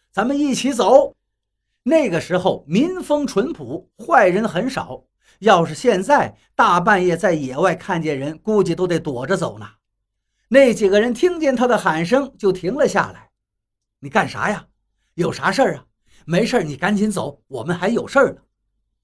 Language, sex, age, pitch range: Chinese, male, 50-69, 160-250 Hz